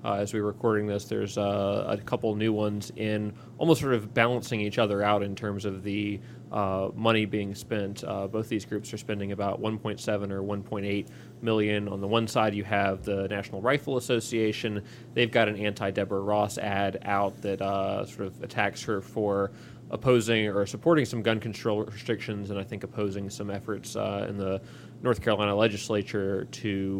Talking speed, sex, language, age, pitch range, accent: 185 wpm, male, English, 30-49, 100-110 Hz, American